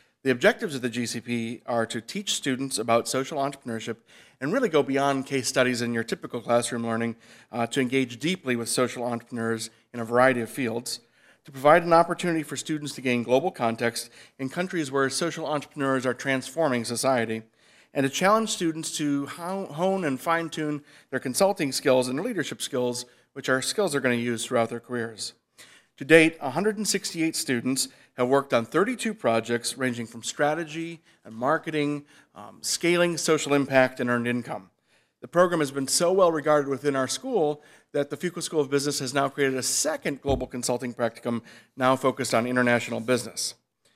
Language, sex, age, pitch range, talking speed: English, male, 40-59, 120-155 Hz, 175 wpm